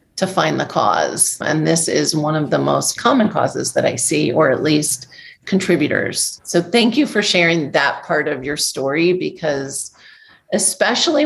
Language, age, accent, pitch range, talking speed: English, 40-59, American, 150-190 Hz, 170 wpm